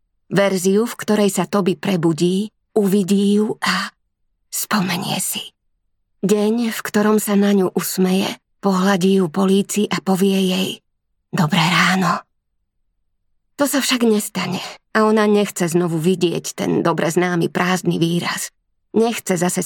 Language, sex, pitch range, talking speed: Slovak, female, 175-210 Hz, 130 wpm